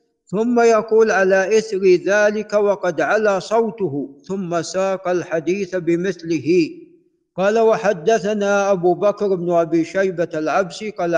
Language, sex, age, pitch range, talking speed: Arabic, male, 50-69, 175-210 Hz, 115 wpm